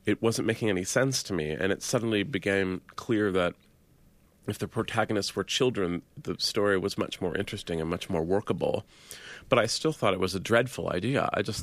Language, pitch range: English, 95-115 Hz